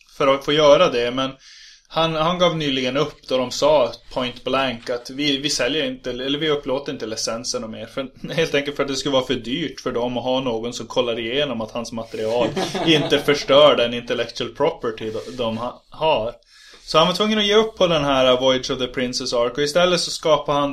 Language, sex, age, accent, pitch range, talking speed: Swedish, male, 20-39, native, 125-155 Hz, 220 wpm